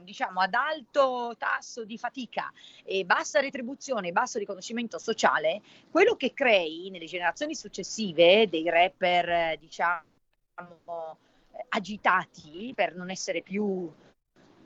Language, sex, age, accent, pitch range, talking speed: Italian, female, 40-59, native, 175-255 Hz, 115 wpm